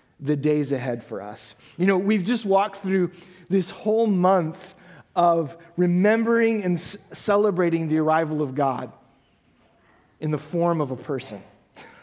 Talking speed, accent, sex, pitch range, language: 145 wpm, American, male, 150-200 Hz, English